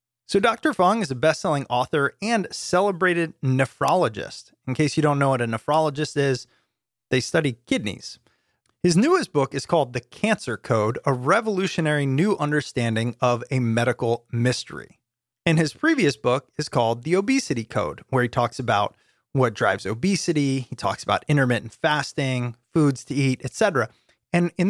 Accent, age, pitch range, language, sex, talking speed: American, 30-49, 125-170 Hz, English, male, 160 wpm